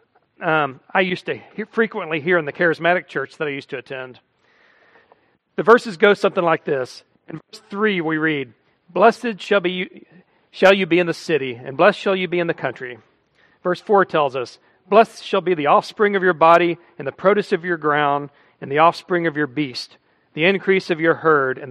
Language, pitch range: English, 155-195 Hz